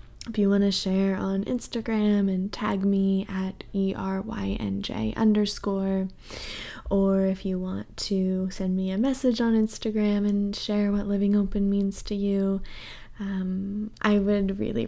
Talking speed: 145 wpm